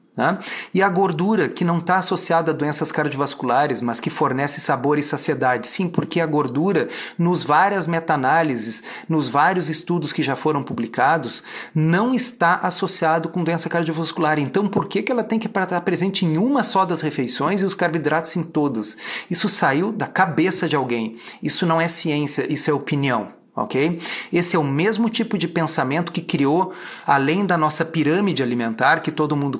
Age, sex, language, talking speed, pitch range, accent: 40-59, male, Portuguese, 175 wpm, 150-185 Hz, Brazilian